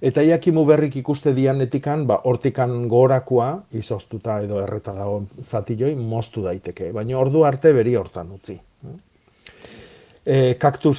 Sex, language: male, Spanish